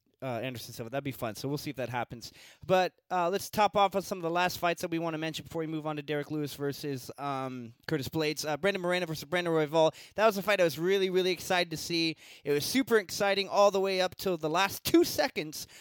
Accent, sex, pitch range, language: American, male, 150-195 Hz, English